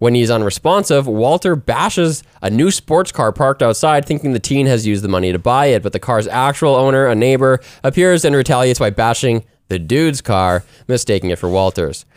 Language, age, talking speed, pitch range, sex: English, 20-39, 195 wpm, 100-140 Hz, male